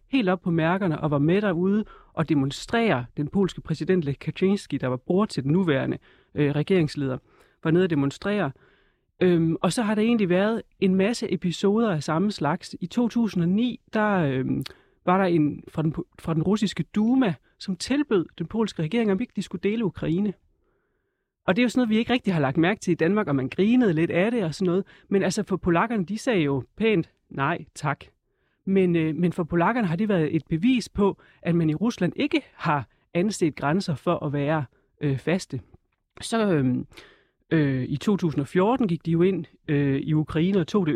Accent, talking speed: native, 195 wpm